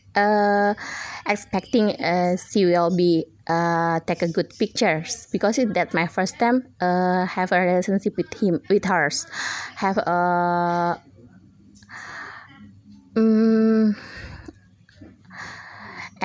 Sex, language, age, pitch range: female, Indonesian, 20-39, 175-220 Hz